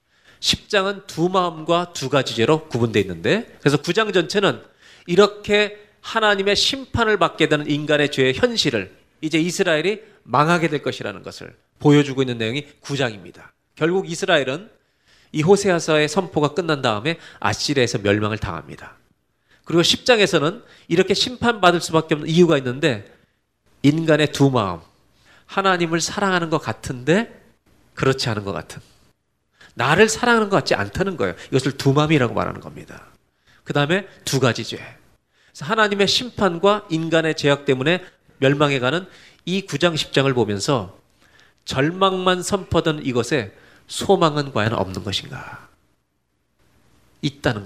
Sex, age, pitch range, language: male, 40-59, 125-180 Hz, Korean